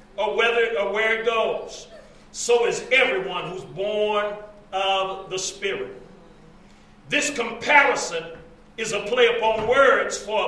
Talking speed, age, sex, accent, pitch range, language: 120 wpm, 40-59, male, American, 210-290 Hz, English